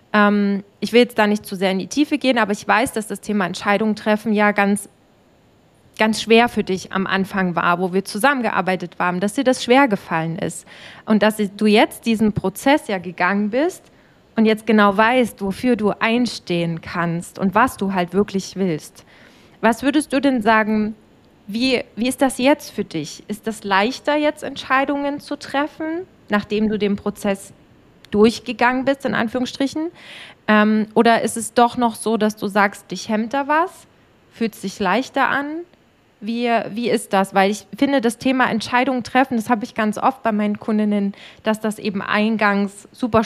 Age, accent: 20-39, German